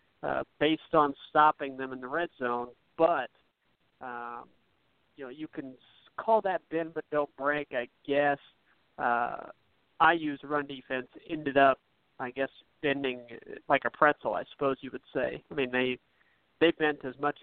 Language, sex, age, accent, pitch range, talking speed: English, male, 50-69, American, 125-150 Hz, 165 wpm